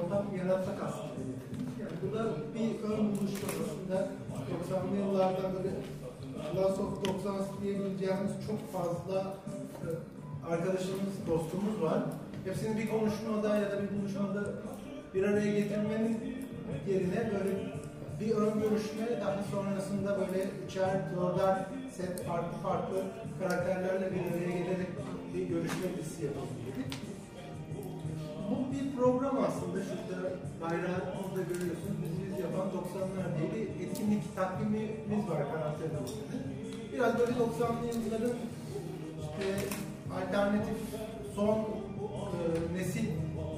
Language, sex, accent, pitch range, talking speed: Turkish, male, native, 170-205 Hz, 105 wpm